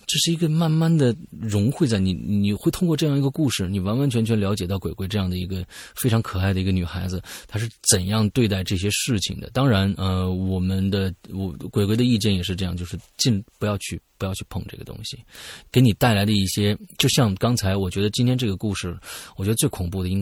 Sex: male